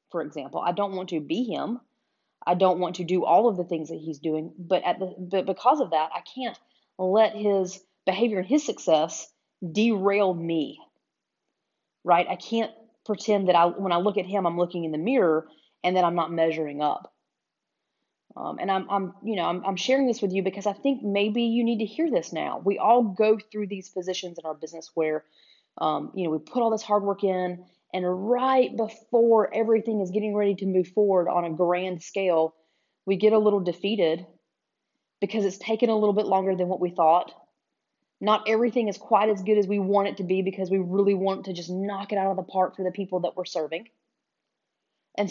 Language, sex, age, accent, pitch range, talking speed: English, female, 30-49, American, 180-215 Hz, 215 wpm